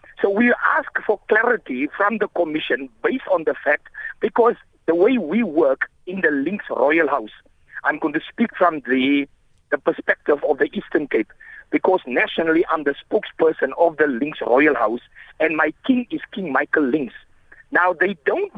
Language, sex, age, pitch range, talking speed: English, male, 50-69, 175-270 Hz, 175 wpm